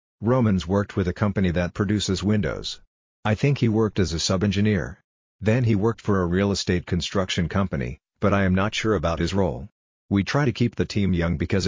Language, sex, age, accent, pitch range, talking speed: English, male, 50-69, American, 90-105 Hz, 205 wpm